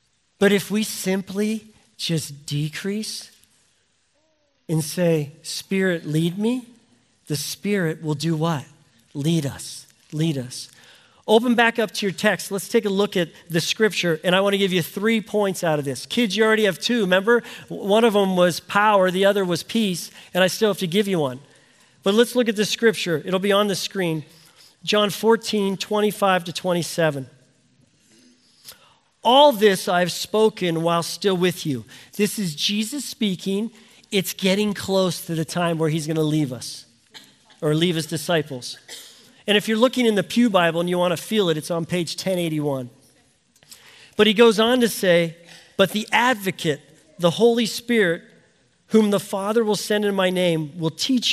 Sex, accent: male, American